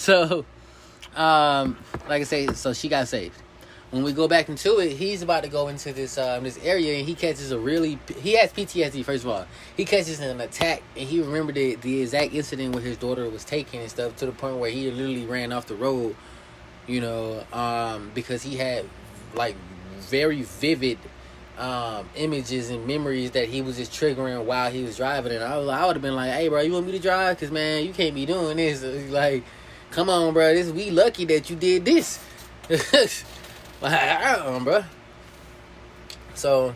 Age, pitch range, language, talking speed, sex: 20-39, 115-145 Hz, English, 200 wpm, male